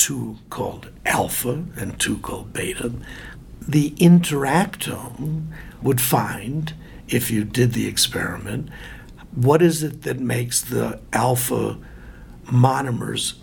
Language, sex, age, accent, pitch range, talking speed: English, male, 60-79, American, 120-155 Hz, 105 wpm